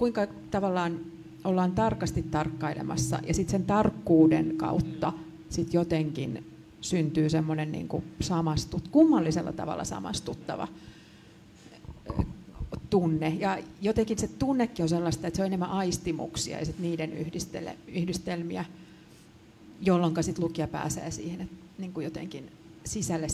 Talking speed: 120 wpm